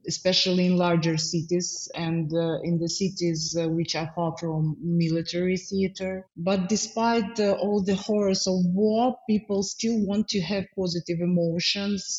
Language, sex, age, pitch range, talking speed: English, female, 20-39, 175-200 Hz, 155 wpm